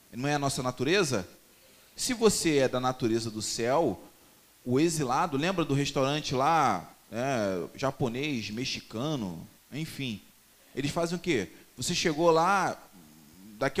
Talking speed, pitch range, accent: 130 wpm, 125-180 Hz, Brazilian